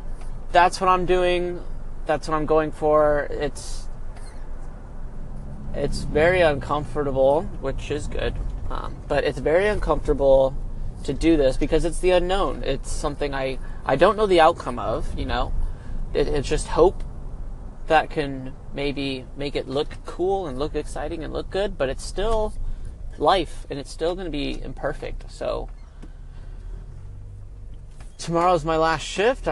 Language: English